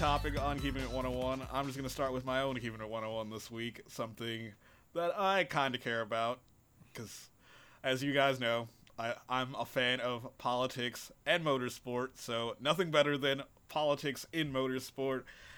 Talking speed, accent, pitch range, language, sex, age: 170 wpm, American, 120-155 Hz, English, male, 30-49